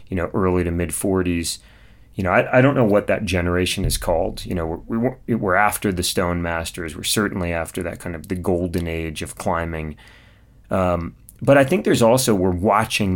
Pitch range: 90-105 Hz